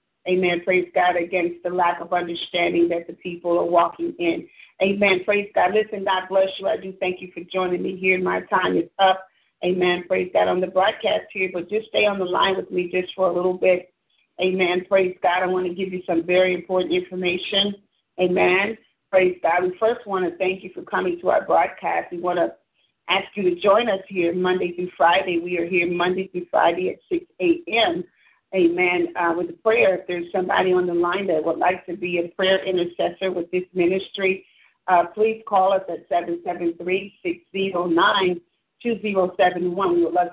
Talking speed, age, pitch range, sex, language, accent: 200 wpm, 40-59, 175-195 Hz, female, English, American